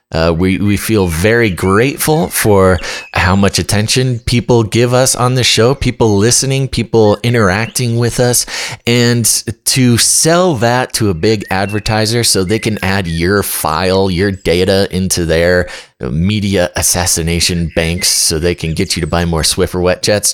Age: 30-49